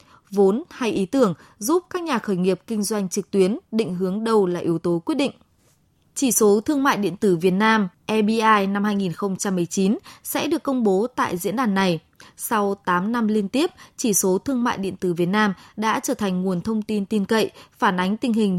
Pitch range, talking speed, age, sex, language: 190-225 Hz, 210 wpm, 20-39, female, Vietnamese